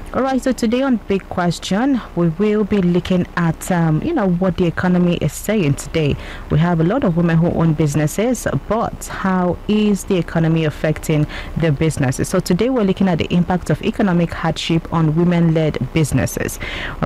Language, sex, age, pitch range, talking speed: English, female, 30-49, 155-190 Hz, 185 wpm